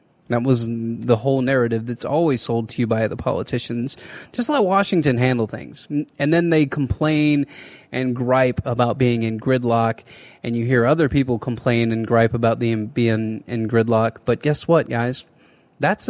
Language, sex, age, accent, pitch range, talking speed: English, male, 20-39, American, 125-170 Hz, 170 wpm